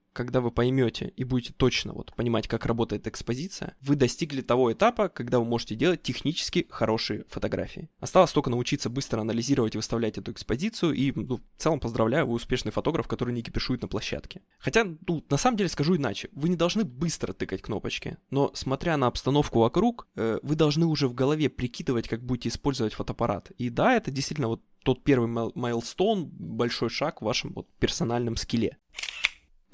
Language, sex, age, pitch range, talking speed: Russian, male, 20-39, 115-150 Hz, 180 wpm